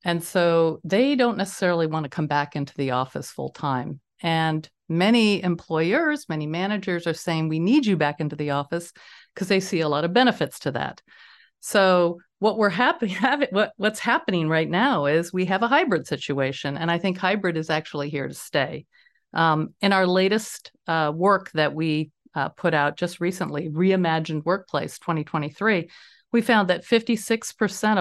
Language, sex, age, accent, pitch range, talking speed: English, female, 50-69, American, 160-210 Hz, 175 wpm